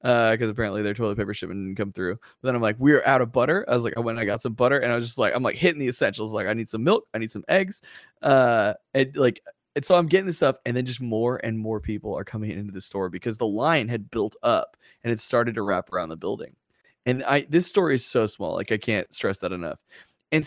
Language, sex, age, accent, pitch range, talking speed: English, male, 20-39, American, 110-155 Hz, 285 wpm